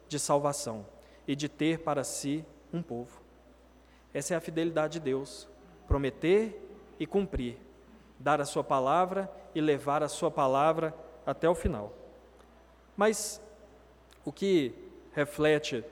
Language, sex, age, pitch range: Portuguese, male, 20-39, 160-200 Hz